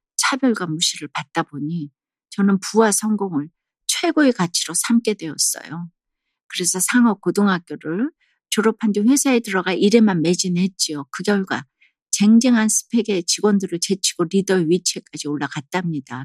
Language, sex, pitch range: Korean, female, 165-220 Hz